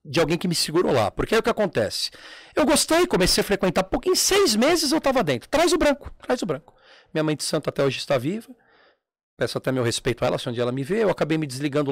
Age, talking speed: 40-59, 265 wpm